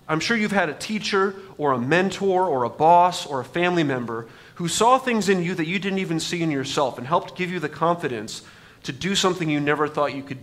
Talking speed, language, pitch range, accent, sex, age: 240 wpm, English, 140-175 Hz, American, male, 30-49